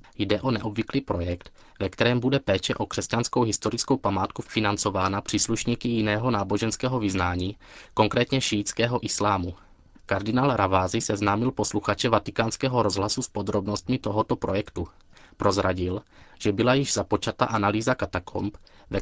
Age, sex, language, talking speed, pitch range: 20-39, male, Czech, 120 wpm, 100-120 Hz